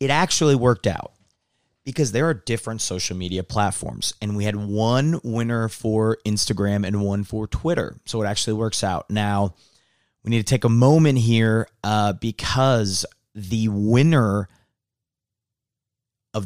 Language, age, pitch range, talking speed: English, 30-49, 100-115 Hz, 145 wpm